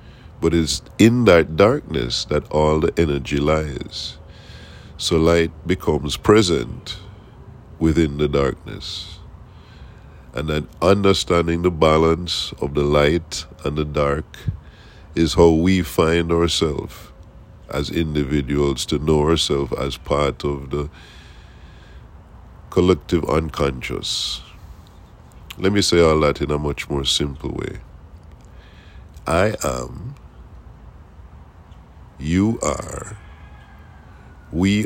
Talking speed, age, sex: 105 wpm, 50-69, male